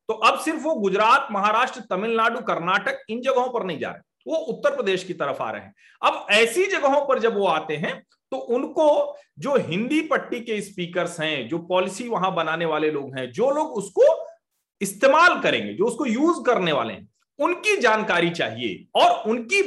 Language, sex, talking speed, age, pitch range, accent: Hindi, male, 185 wpm, 40-59, 185-285 Hz, native